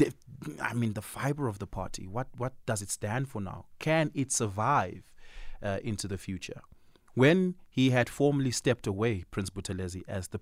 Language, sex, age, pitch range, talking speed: English, male, 30-49, 105-155 Hz, 180 wpm